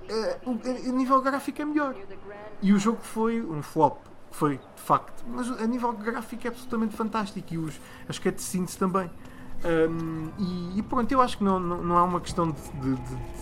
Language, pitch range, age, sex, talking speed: Portuguese, 135-180 Hz, 20-39, male, 190 wpm